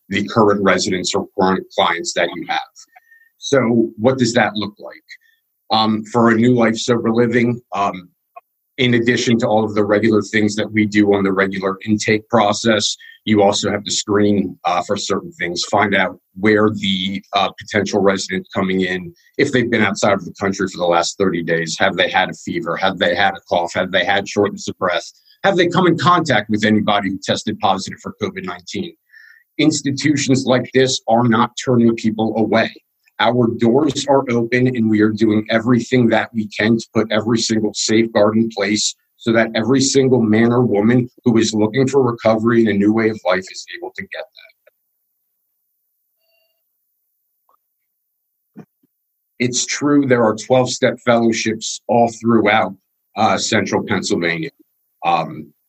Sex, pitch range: male, 105-125 Hz